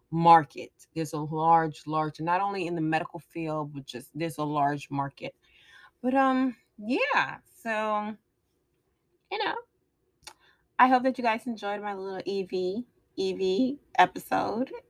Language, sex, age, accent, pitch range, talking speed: English, female, 20-39, American, 165-220 Hz, 135 wpm